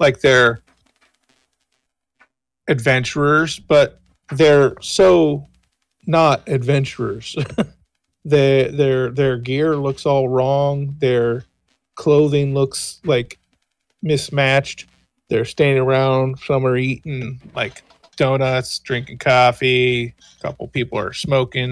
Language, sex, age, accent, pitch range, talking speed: English, male, 40-59, American, 120-140 Hz, 95 wpm